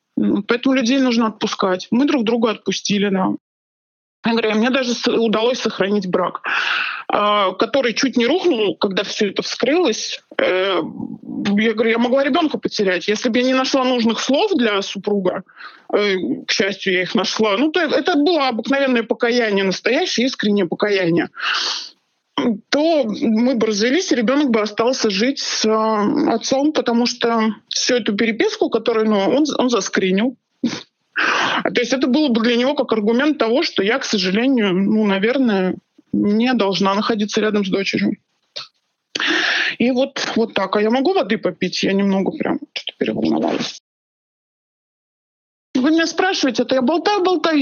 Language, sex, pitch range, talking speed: Russian, male, 210-270 Hz, 145 wpm